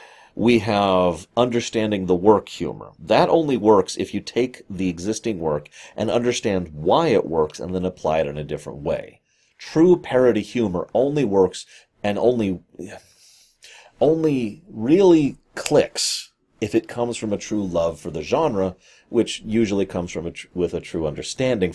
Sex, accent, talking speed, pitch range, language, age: male, American, 155 wpm, 90-120 Hz, English, 30-49